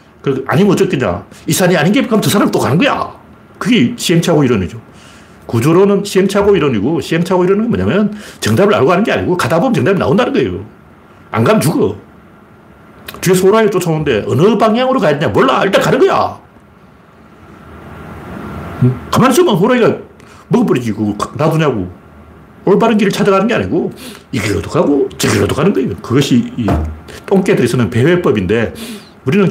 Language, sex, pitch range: Korean, male, 135-205 Hz